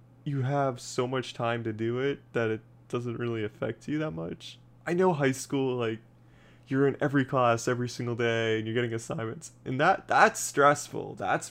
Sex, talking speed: male, 195 wpm